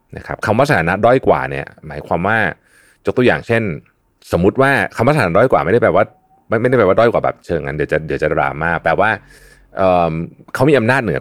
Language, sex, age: Thai, male, 30-49